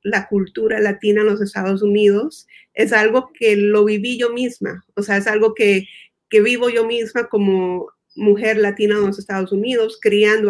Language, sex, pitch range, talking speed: Spanish, female, 200-225 Hz, 175 wpm